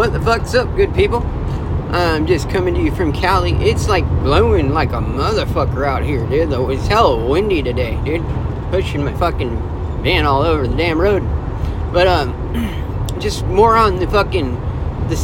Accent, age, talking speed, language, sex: American, 30-49, 175 wpm, English, male